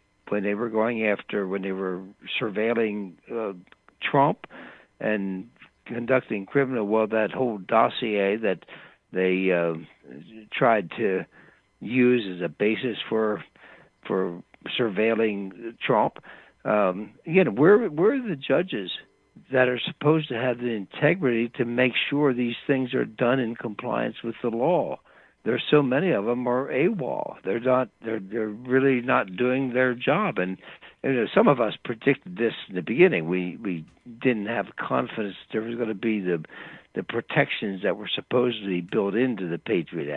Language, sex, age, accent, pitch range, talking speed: English, male, 60-79, American, 95-125 Hz, 155 wpm